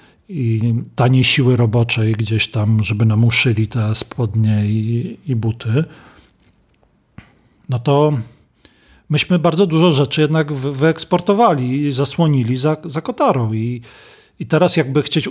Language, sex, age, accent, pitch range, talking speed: Polish, male, 40-59, native, 115-155 Hz, 120 wpm